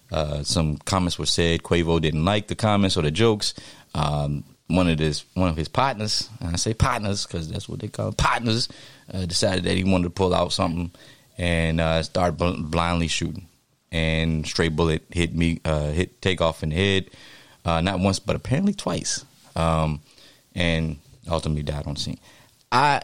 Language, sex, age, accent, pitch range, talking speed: English, male, 30-49, American, 80-100 Hz, 185 wpm